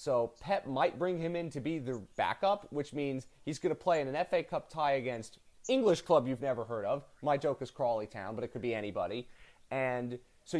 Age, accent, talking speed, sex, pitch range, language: 30-49, American, 225 wpm, male, 120-155 Hz, English